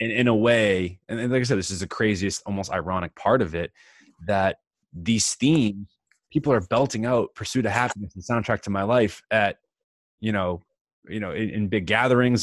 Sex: male